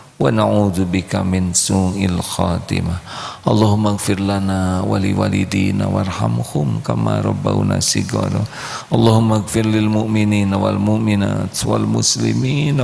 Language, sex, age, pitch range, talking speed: Indonesian, male, 50-69, 100-115 Hz, 80 wpm